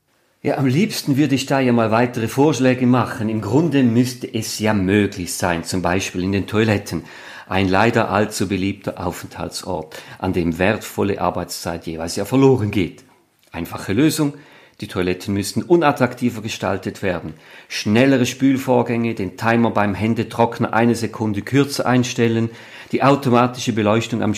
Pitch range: 95-125 Hz